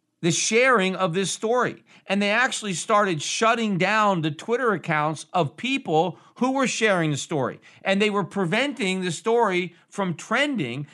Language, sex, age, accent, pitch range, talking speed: English, male, 50-69, American, 155-220 Hz, 160 wpm